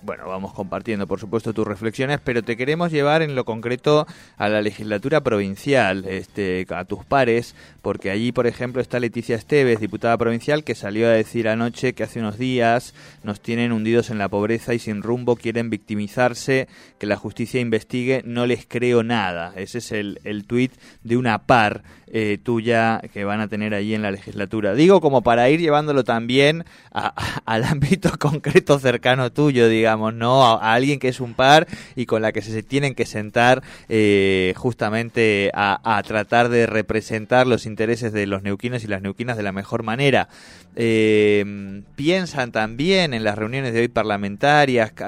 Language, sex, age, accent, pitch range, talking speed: Spanish, male, 20-39, Argentinian, 105-125 Hz, 180 wpm